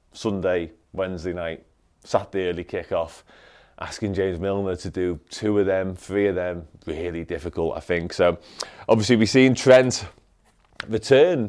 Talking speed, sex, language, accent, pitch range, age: 145 wpm, male, English, British, 90-105 Hz, 30-49